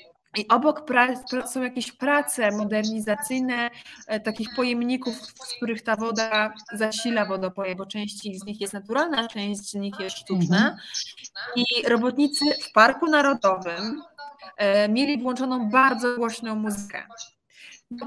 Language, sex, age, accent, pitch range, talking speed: Polish, female, 20-39, native, 215-260 Hz, 130 wpm